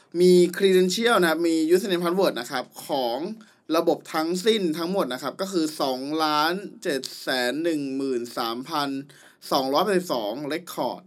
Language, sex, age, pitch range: Thai, male, 20-39, 140-185 Hz